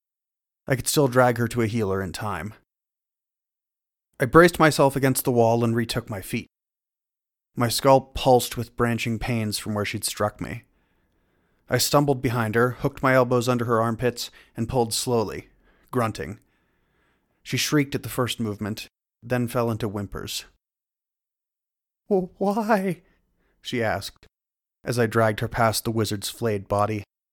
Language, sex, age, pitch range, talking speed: English, male, 30-49, 110-145 Hz, 145 wpm